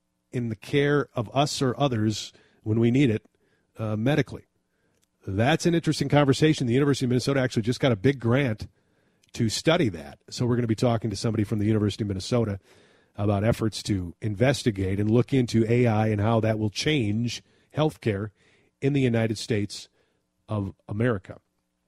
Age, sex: 40-59, male